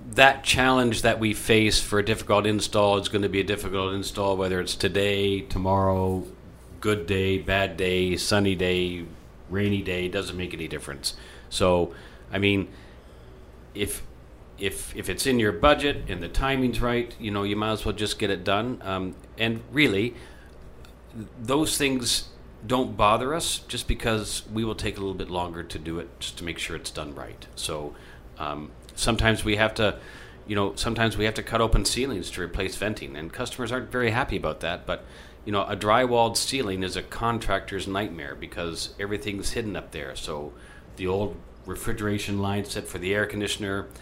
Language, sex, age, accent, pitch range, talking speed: English, male, 50-69, American, 85-110 Hz, 180 wpm